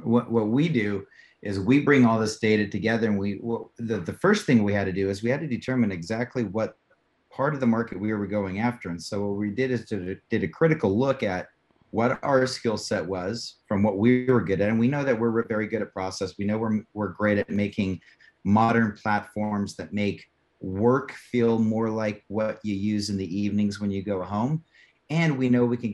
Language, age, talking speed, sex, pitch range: English, 30-49, 225 wpm, male, 95-115 Hz